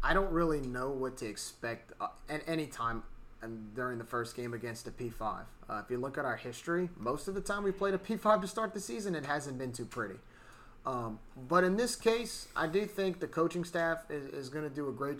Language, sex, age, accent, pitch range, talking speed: English, male, 30-49, American, 130-170 Hz, 230 wpm